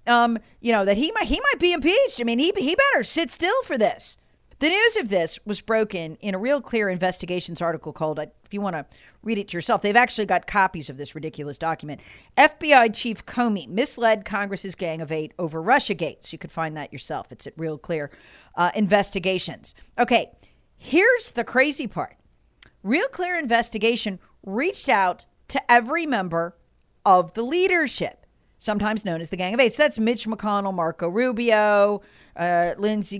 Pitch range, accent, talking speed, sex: 190-285 Hz, American, 185 wpm, female